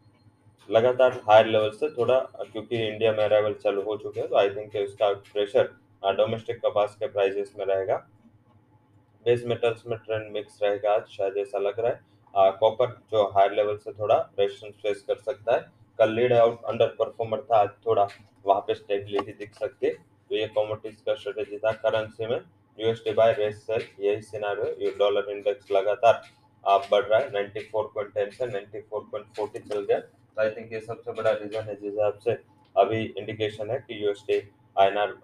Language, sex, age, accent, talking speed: English, male, 20-39, Indian, 125 wpm